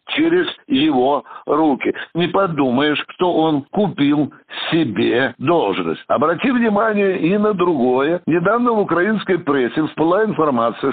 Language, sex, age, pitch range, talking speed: Russian, male, 60-79, 150-210 Hz, 115 wpm